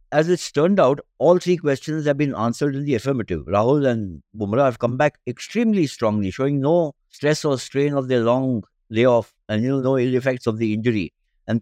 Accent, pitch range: Indian, 115-145 Hz